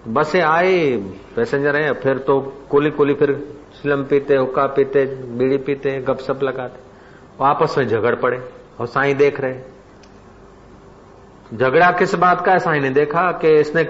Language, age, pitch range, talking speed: Hindi, 40-59, 130-180 Hz, 155 wpm